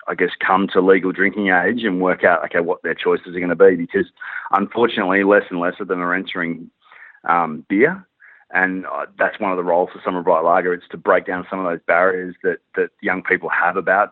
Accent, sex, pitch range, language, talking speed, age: Australian, male, 95-105 Hz, English, 230 wpm, 30-49